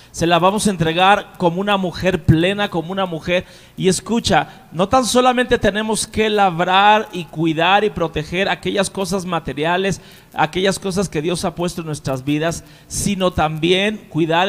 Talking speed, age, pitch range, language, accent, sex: 160 wpm, 40-59, 160-215 Hz, Spanish, Mexican, male